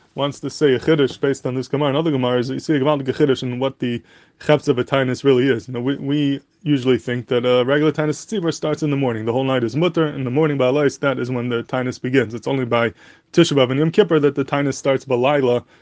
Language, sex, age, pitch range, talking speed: English, male, 20-39, 125-145 Hz, 270 wpm